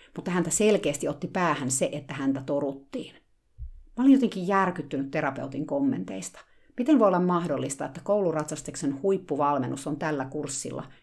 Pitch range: 145-195 Hz